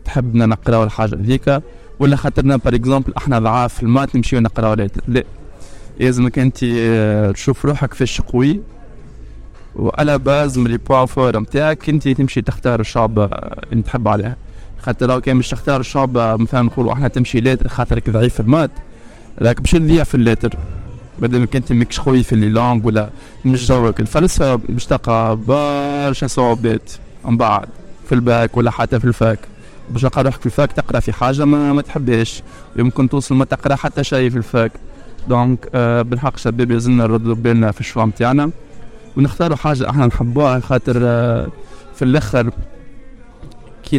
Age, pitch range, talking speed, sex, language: 20-39, 115-135 Hz, 160 wpm, male, Arabic